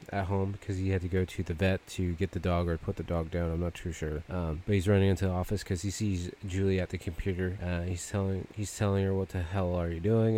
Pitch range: 90-105 Hz